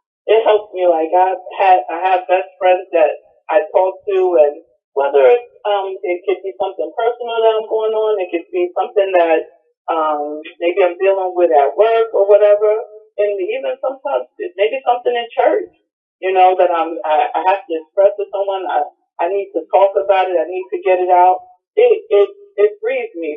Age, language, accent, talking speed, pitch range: 40-59, English, American, 200 wpm, 170-220 Hz